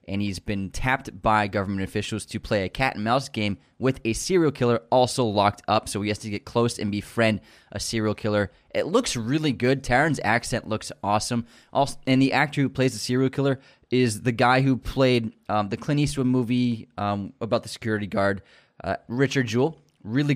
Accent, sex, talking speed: American, male, 200 wpm